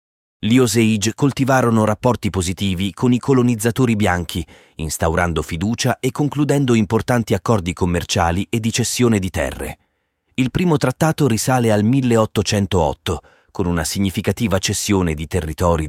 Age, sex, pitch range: 30-49, male, 85-115 Hz